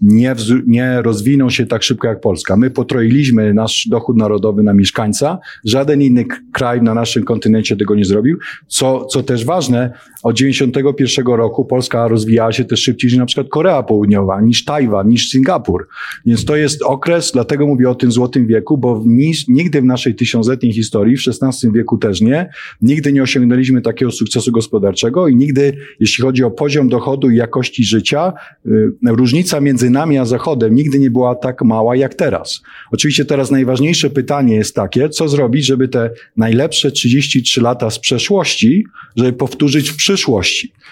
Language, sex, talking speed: Polish, male, 170 wpm